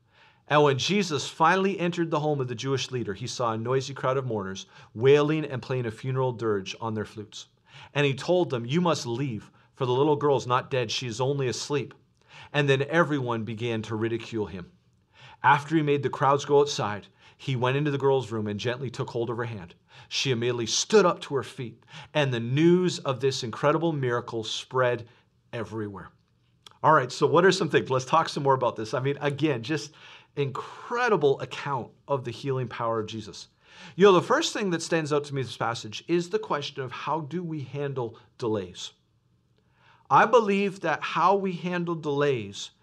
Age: 40-59